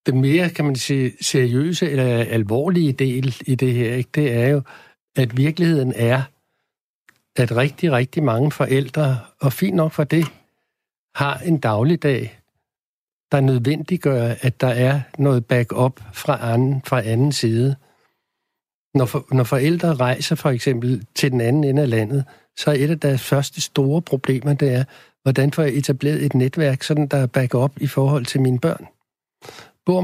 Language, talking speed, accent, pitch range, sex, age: Danish, 165 wpm, native, 125-150 Hz, male, 60-79